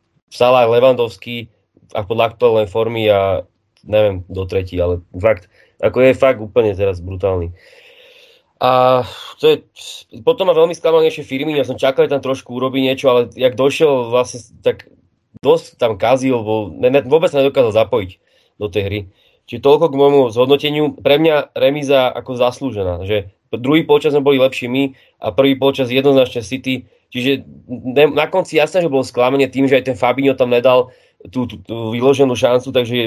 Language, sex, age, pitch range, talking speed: Slovak, male, 20-39, 110-140 Hz, 170 wpm